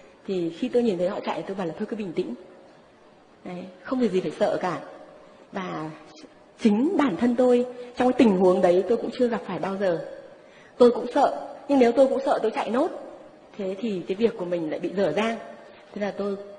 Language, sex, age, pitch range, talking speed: Vietnamese, female, 20-39, 185-240 Hz, 225 wpm